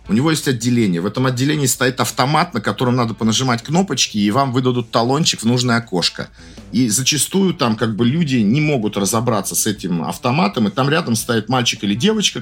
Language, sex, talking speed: Russian, male, 195 wpm